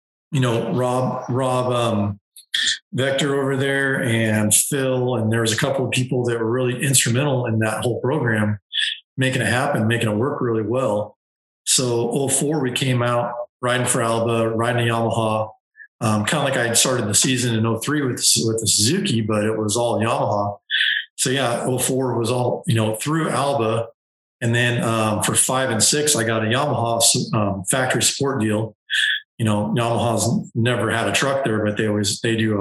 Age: 40-59